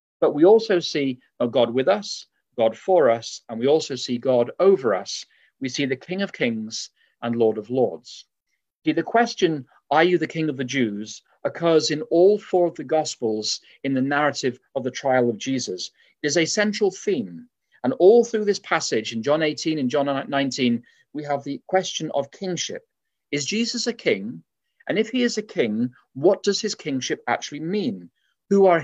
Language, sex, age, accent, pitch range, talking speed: English, male, 40-59, British, 125-190 Hz, 195 wpm